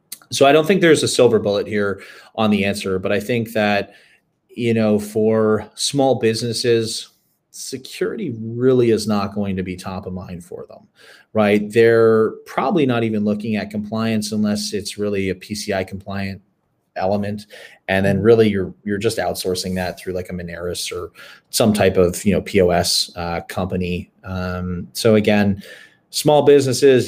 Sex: male